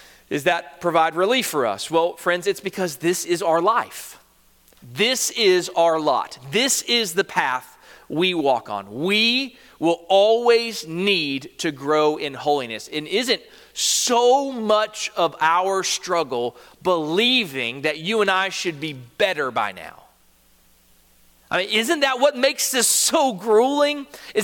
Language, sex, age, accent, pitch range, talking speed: English, male, 40-59, American, 170-280 Hz, 145 wpm